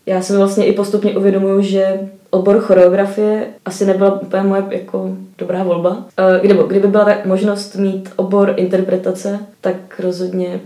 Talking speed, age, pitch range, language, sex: 135 wpm, 20-39, 185-200 Hz, Czech, female